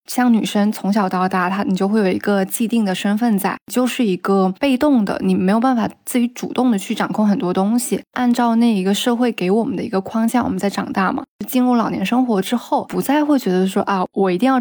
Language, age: Chinese, 20-39